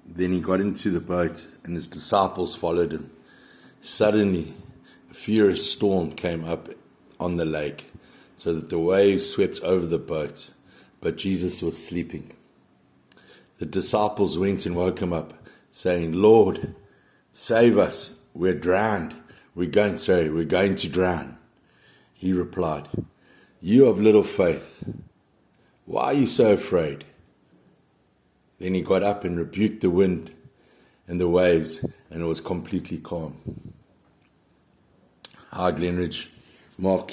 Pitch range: 85-100 Hz